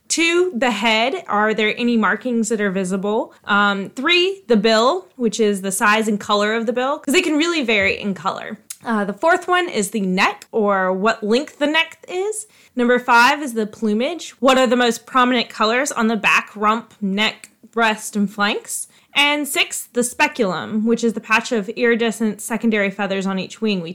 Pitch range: 210-260 Hz